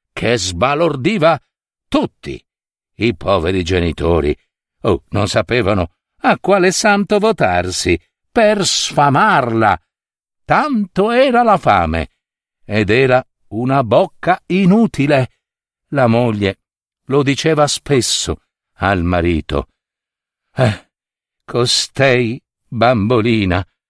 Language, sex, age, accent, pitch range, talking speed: Italian, male, 60-79, native, 105-170 Hz, 85 wpm